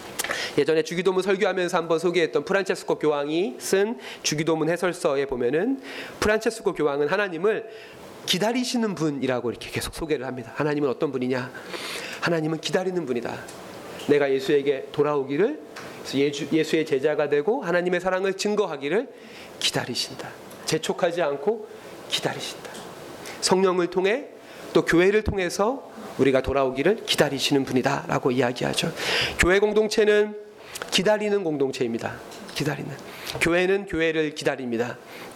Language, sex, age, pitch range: Korean, male, 30-49, 135-205 Hz